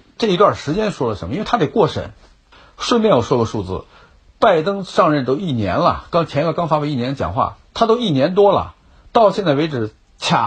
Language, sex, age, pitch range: Chinese, male, 60-79, 120-175 Hz